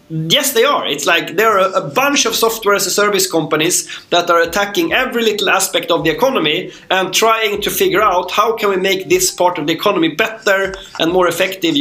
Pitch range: 185-250 Hz